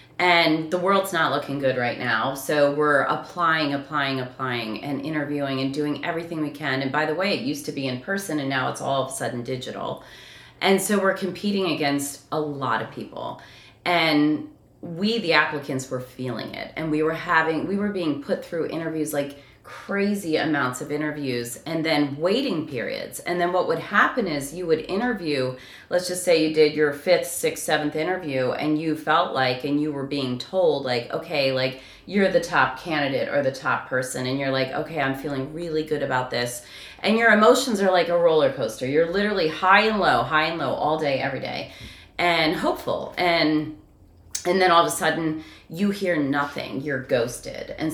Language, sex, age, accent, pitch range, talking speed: English, female, 30-49, American, 135-165 Hz, 195 wpm